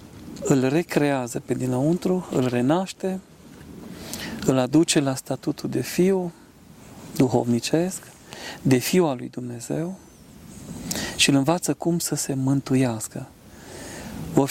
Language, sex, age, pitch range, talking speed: Romanian, male, 40-59, 130-165 Hz, 110 wpm